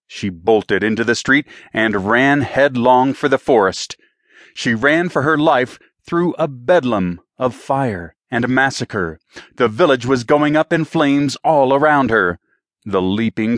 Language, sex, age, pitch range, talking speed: English, male, 30-49, 105-135 Hz, 155 wpm